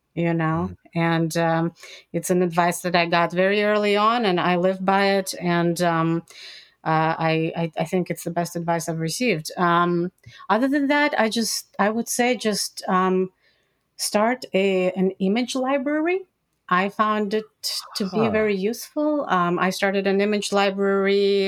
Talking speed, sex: 170 wpm, female